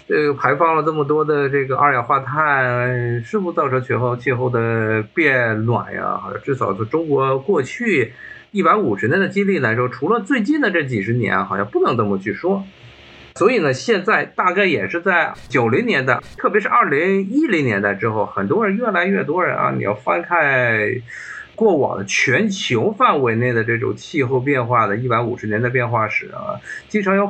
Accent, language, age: native, Chinese, 50-69